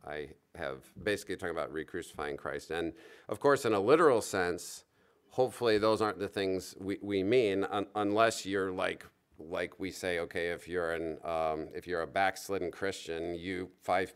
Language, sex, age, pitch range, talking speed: English, male, 40-59, 85-115 Hz, 175 wpm